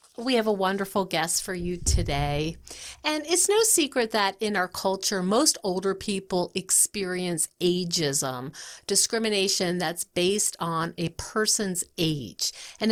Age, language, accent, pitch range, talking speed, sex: 50-69, English, American, 170-230 Hz, 135 wpm, female